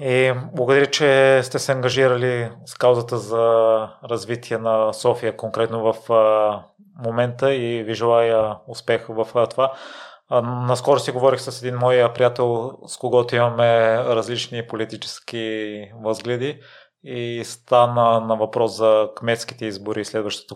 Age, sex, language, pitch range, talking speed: 30-49, male, Bulgarian, 115-125 Hz, 125 wpm